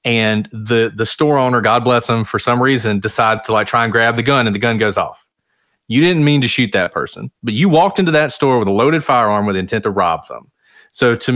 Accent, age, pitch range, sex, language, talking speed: American, 30-49, 105-125 Hz, male, English, 255 wpm